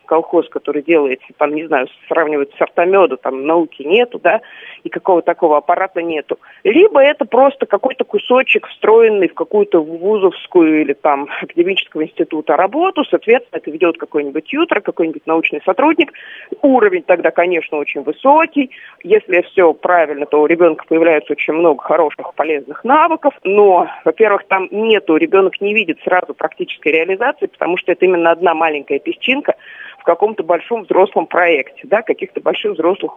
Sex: female